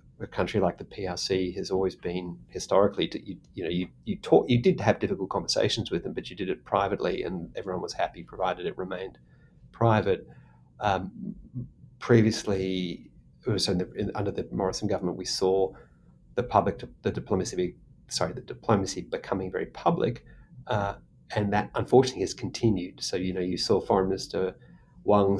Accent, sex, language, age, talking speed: Australian, male, English, 30-49, 175 wpm